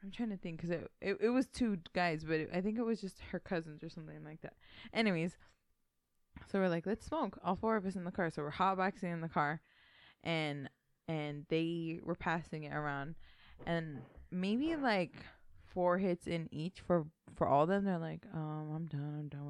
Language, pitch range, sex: English, 150-180 Hz, female